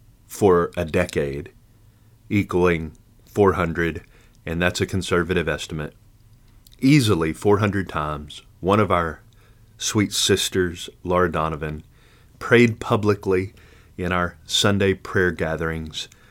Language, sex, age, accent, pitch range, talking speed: English, male, 30-49, American, 85-110 Hz, 100 wpm